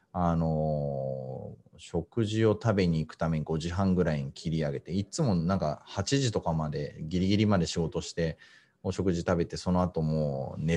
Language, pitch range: Japanese, 80-95 Hz